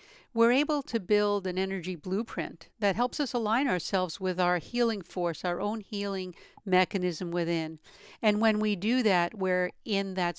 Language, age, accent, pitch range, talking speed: English, 50-69, American, 170-205 Hz, 170 wpm